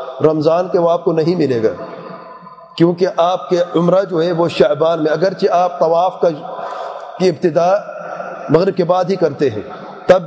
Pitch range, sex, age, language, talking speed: 170-195 Hz, male, 40-59, English, 135 wpm